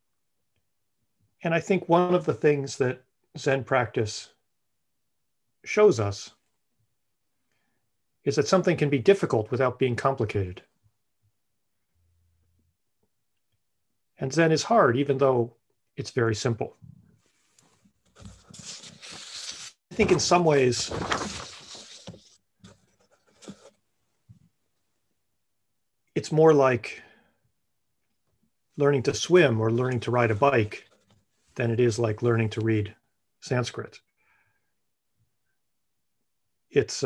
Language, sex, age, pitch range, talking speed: English, male, 40-59, 105-135 Hz, 90 wpm